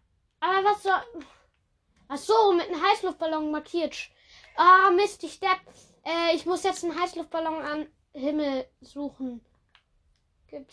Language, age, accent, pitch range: German, 20-39, German, 295-385 Hz